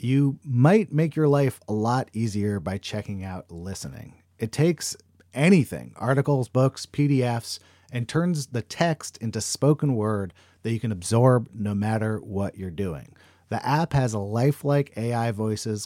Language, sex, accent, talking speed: English, male, American, 155 wpm